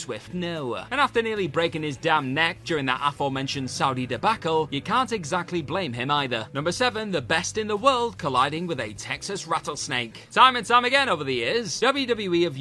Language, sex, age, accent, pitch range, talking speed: English, male, 30-49, British, 135-210 Hz, 195 wpm